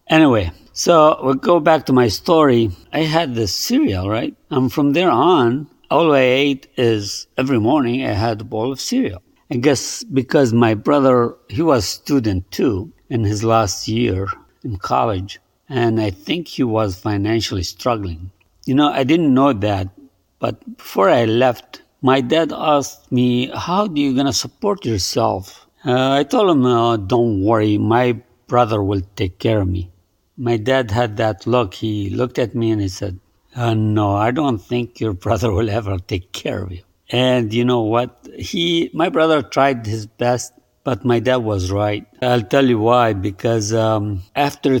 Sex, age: male, 50-69